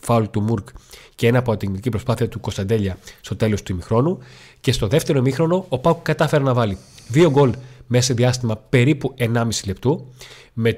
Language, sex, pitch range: Greek, male, 110-130 Hz